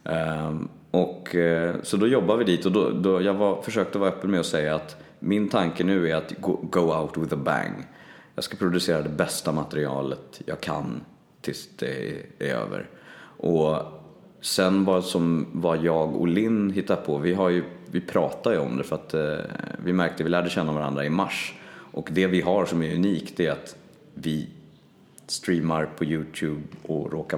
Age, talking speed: 30-49, 195 wpm